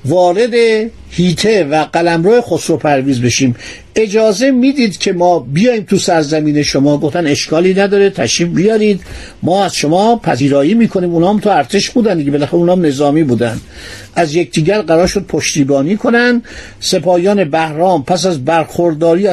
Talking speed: 140 wpm